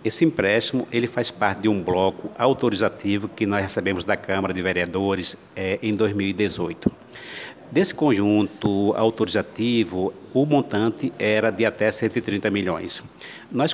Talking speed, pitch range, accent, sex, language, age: 130 wpm, 100-130 Hz, Brazilian, male, Portuguese, 60-79